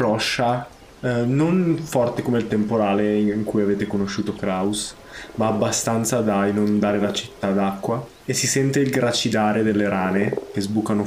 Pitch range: 105-120 Hz